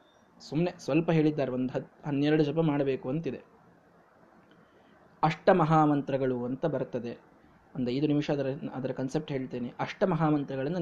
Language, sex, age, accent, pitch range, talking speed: Kannada, male, 20-39, native, 140-195 Hz, 110 wpm